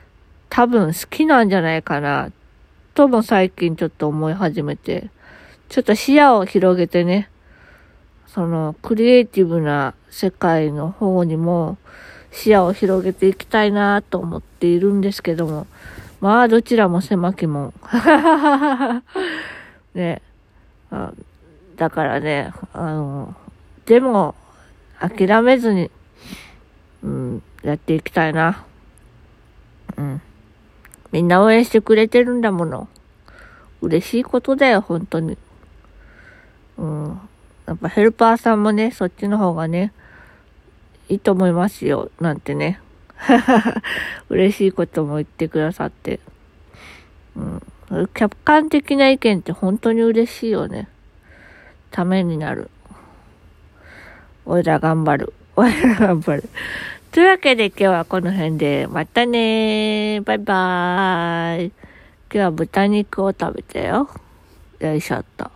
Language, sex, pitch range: Japanese, female, 160-220 Hz